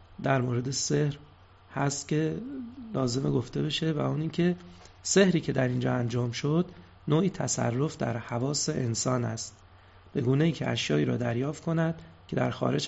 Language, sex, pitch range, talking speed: Persian, male, 95-150 Hz, 160 wpm